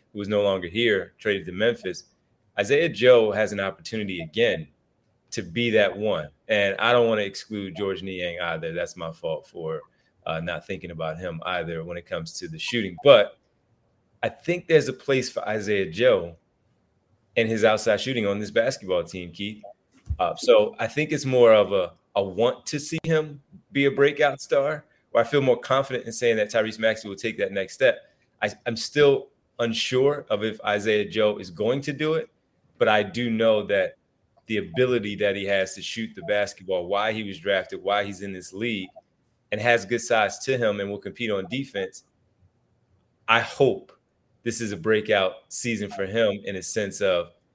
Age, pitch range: 30-49, 100-125 Hz